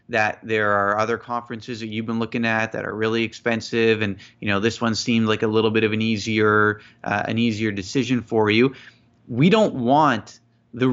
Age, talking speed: 30-49, 205 wpm